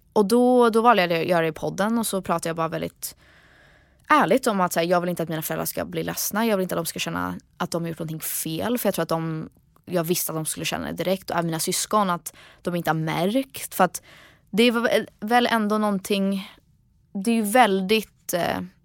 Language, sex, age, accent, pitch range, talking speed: Swedish, female, 20-39, native, 165-205 Hz, 240 wpm